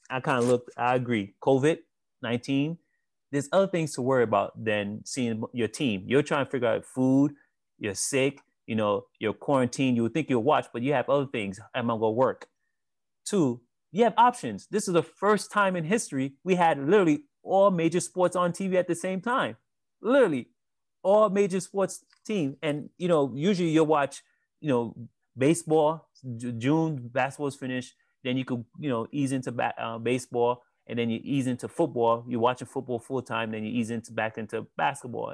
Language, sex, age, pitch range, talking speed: English, male, 30-49, 120-165 Hz, 190 wpm